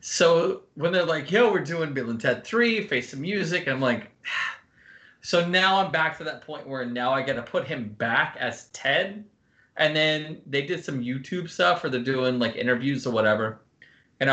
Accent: American